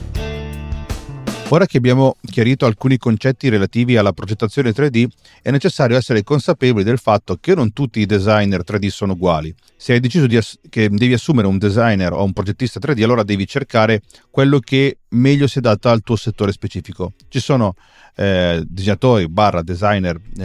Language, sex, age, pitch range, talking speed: Italian, male, 40-59, 100-125 Hz, 160 wpm